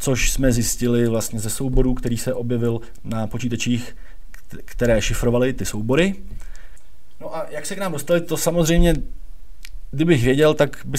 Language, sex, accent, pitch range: Czech, male, native, 115-130 Hz